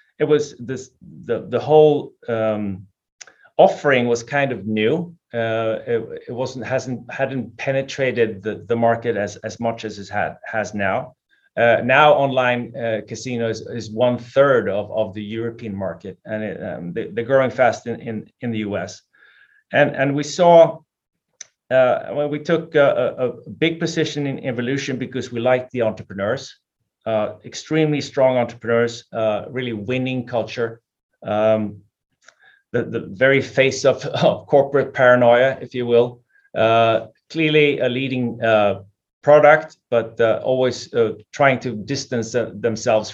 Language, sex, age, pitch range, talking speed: English, male, 30-49, 115-140 Hz, 155 wpm